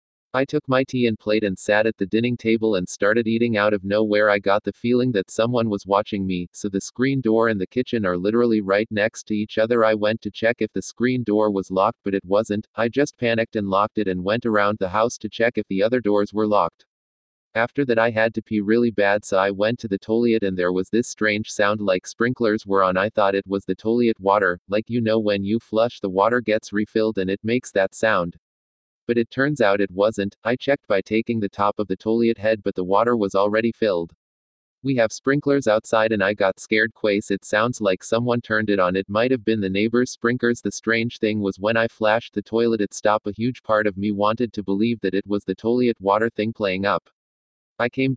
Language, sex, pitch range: English, male, 100-115 Hz